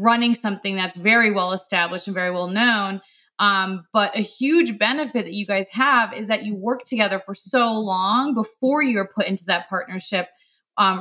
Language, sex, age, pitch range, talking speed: English, female, 20-39, 190-225 Hz, 185 wpm